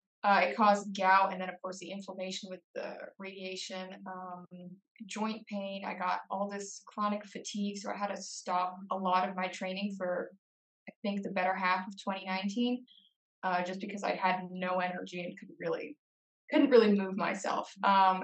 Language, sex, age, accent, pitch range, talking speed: English, female, 20-39, American, 185-210 Hz, 175 wpm